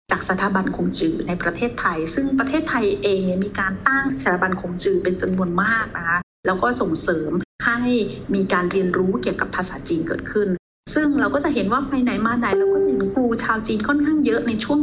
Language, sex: Thai, female